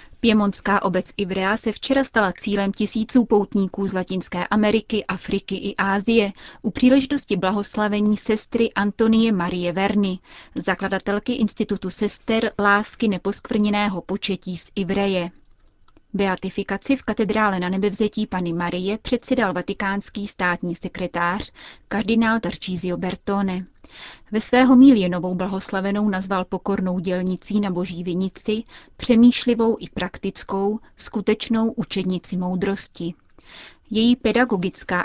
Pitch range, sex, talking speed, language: 185-215 Hz, female, 110 wpm, Czech